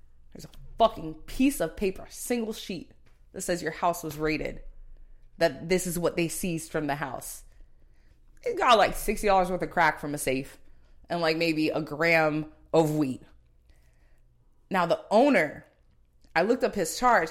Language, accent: English, American